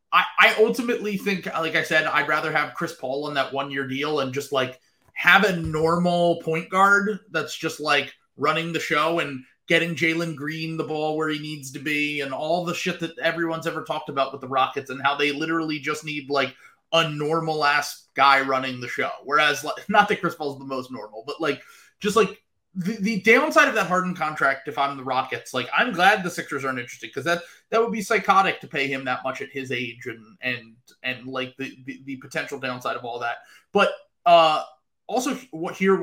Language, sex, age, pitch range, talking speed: English, male, 30-49, 140-170 Hz, 210 wpm